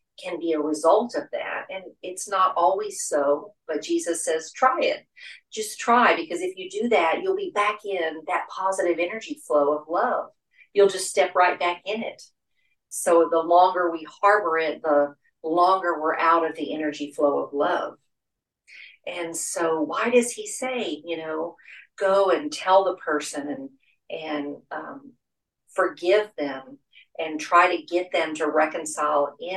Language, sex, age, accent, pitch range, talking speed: English, female, 50-69, American, 155-195 Hz, 165 wpm